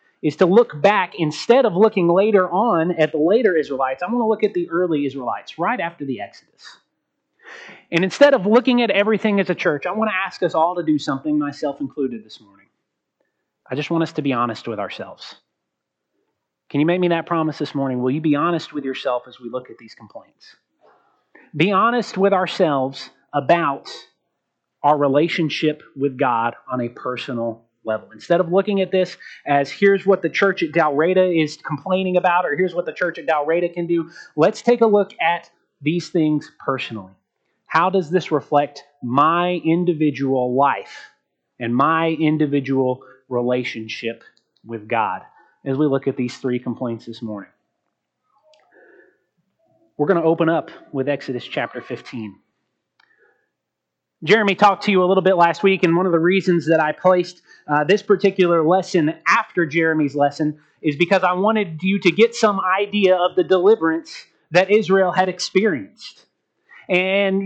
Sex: male